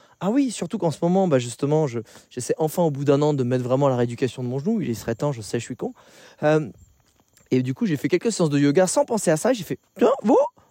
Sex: male